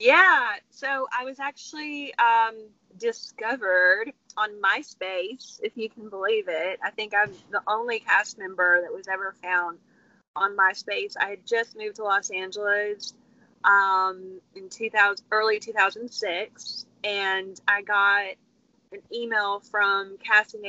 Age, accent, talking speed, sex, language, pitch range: 20-39, American, 135 wpm, female, English, 195-275 Hz